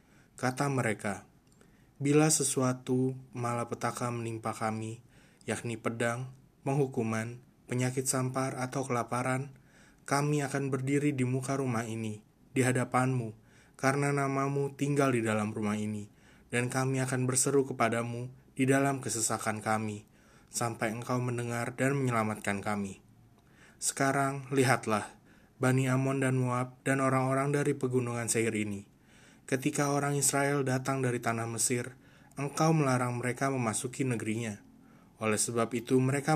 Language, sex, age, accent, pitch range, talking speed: Indonesian, male, 20-39, native, 115-135 Hz, 120 wpm